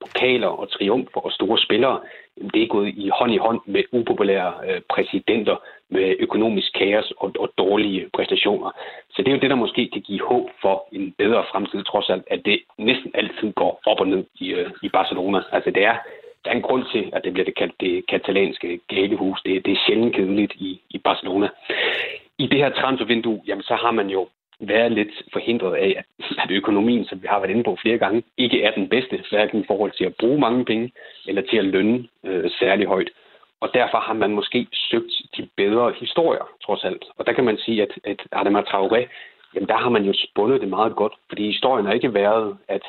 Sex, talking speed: male, 215 wpm